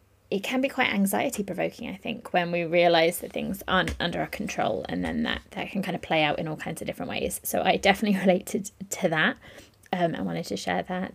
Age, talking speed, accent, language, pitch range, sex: 20-39, 235 wpm, British, English, 180-215 Hz, female